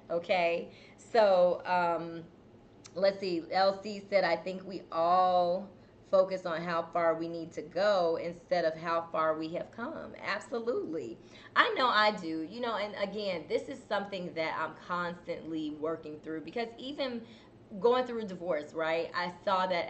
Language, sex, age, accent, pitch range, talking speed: English, female, 20-39, American, 165-200 Hz, 160 wpm